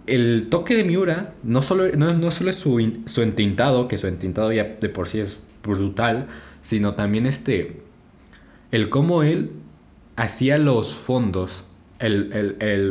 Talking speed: 165 wpm